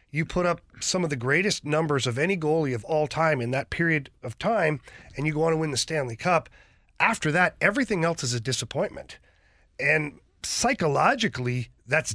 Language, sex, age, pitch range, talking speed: English, male, 40-59, 135-180 Hz, 190 wpm